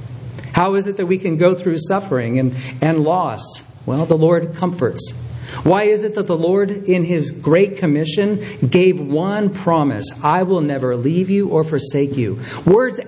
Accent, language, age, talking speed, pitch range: American, English, 50-69, 175 wpm, 130-185 Hz